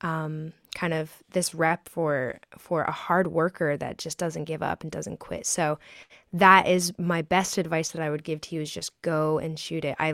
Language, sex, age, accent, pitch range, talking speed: English, female, 10-29, American, 160-180 Hz, 220 wpm